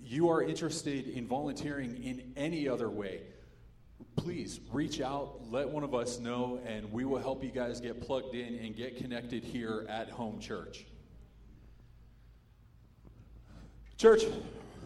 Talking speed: 135 wpm